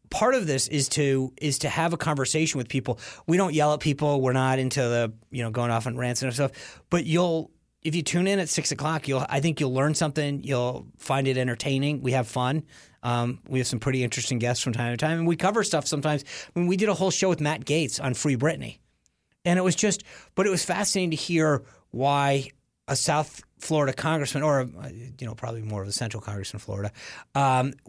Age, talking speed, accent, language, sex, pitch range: 30-49, 225 wpm, American, English, male, 130-165 Hz